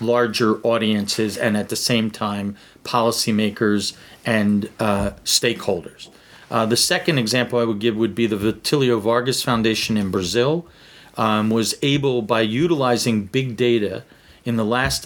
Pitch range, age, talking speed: 110-130 Hz, 40-59, 145 wpm